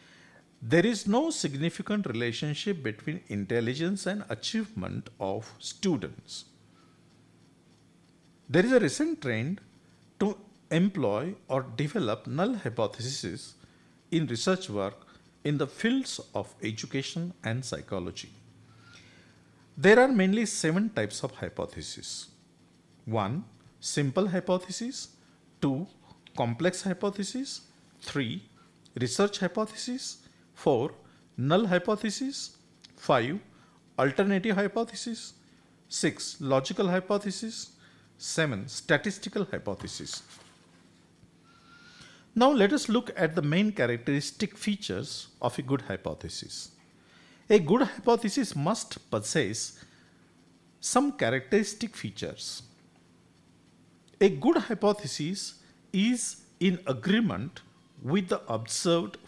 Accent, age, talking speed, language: Indian, 50-69, 90 wpm, English